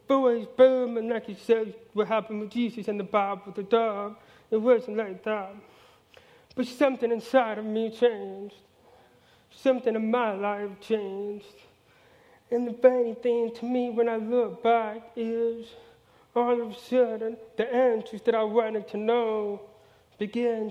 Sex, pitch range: male, 215-245 Hz